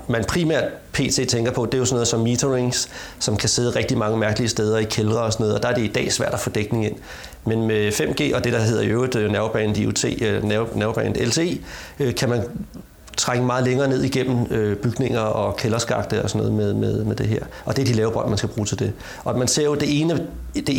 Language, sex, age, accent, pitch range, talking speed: Danish, male, 30-49, native, 105-125 Hz, 235 wpm